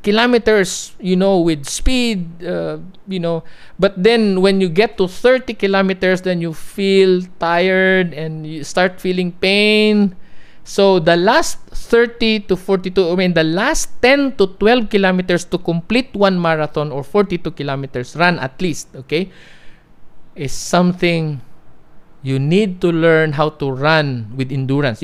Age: 50-69